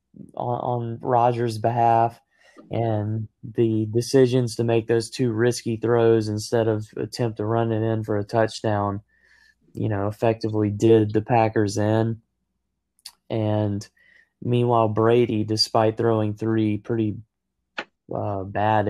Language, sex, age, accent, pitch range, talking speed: English, male, 20-39, American, 105-115 Hz, 125 wpm